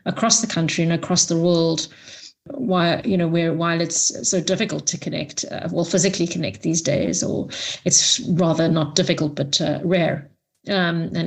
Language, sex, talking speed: English, female, 175 wpm